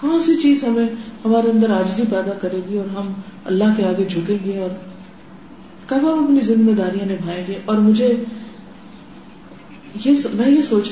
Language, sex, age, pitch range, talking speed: Urdu, female, 40-59, 205-255 Hz, 170 wpm